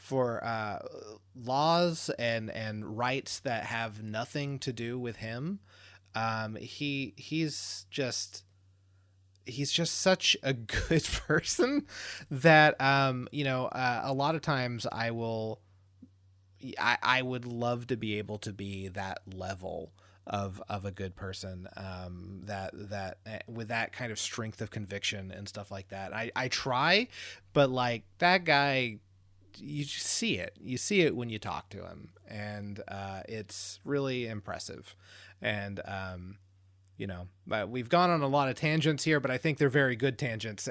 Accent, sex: American, male